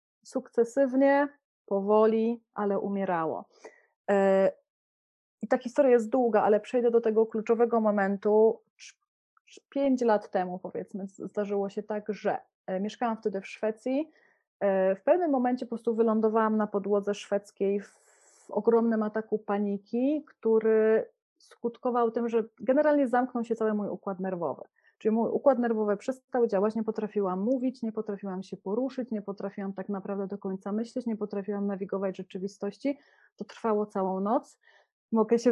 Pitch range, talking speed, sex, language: 205-245 Hz, 135 wpm, female, English